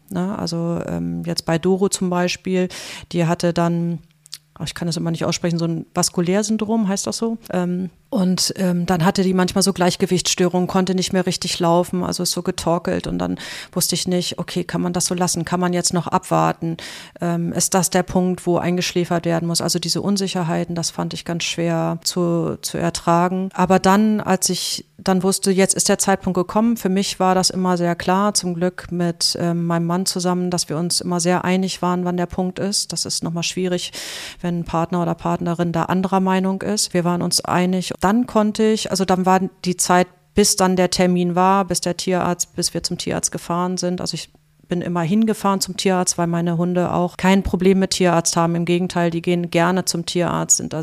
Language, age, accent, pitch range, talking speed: German, 30-49, German, 170-185 Hz, 205 wpm